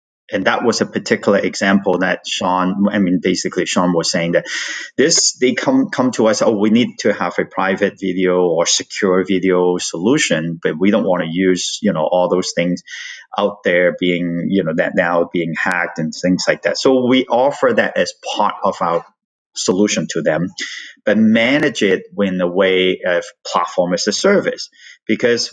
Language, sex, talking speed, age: English, male, 190 wpm, 30-49